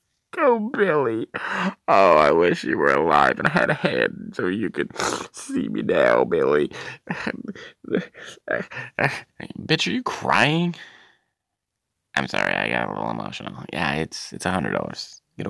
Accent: American